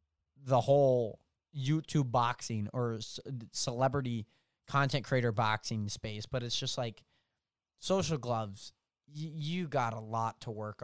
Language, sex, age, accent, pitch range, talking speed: English, male, 20-39, American, 120-150 Hz, 125 wpm